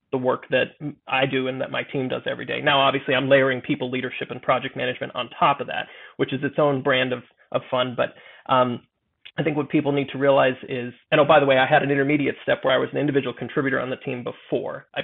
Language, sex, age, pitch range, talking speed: English, male, 30-49, 130-155 Hz, 255 wpm